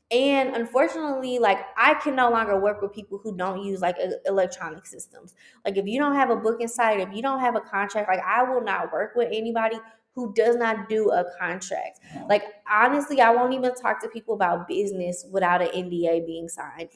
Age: 20-39